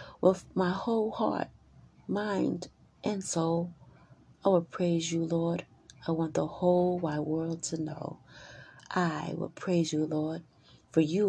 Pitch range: 145-185 Hz